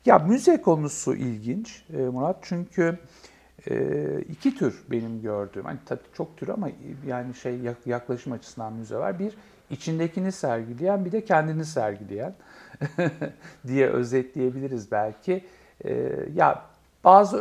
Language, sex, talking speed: Turkish, male, 110 wpm